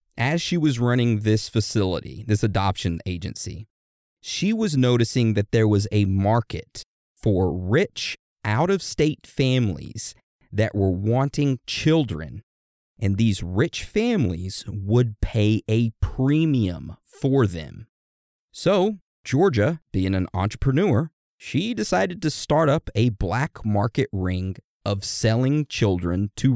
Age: 30-49